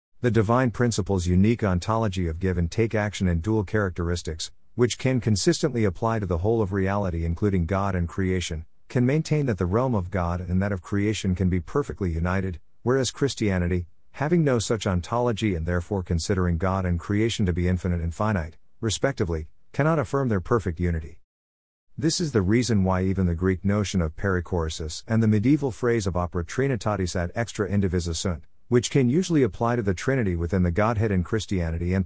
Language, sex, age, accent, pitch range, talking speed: English, male, 50-69, American, 90-115 Hz, 185 wpm